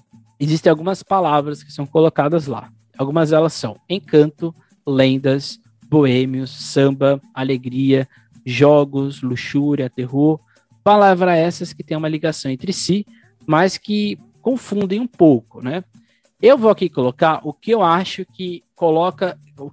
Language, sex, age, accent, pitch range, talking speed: Portuguese, male, 20-39, Brazilian, 130-175 Hz, 130 wpm